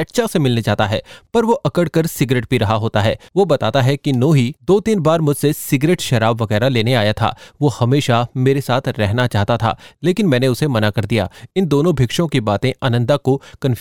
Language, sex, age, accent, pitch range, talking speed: Hindi, male, 30-49, native, 115-150 Hz, 135 wpm